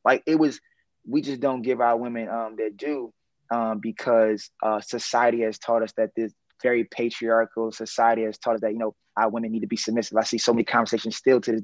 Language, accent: English, American